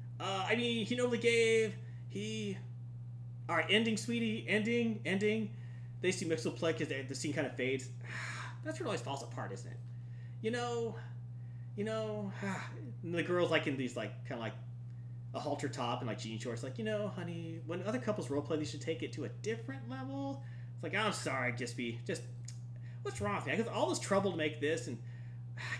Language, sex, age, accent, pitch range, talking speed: English, male, 30-49, American, 120-145 Hz, 210 wpm